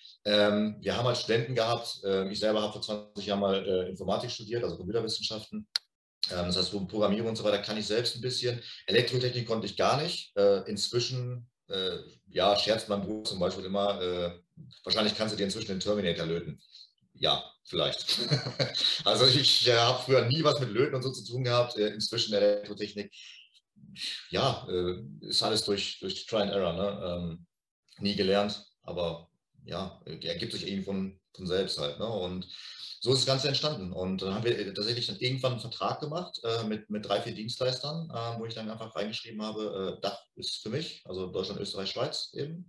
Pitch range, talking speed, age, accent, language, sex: 100-120 Hz, 195 wpm, 40-59, German, German, male